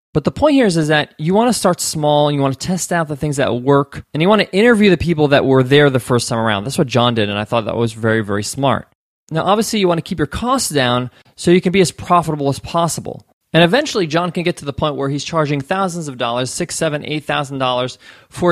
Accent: American